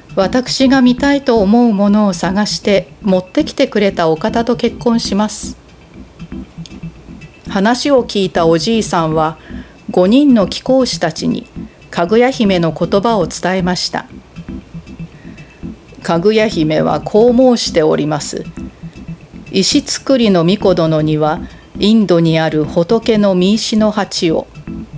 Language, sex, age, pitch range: Japanese, female, 40-59, 165-225 Hz